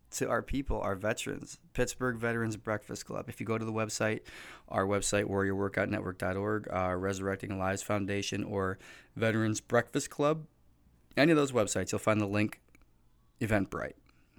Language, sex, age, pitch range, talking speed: English, male, 20-39, 100-135 Hz, 145 wpm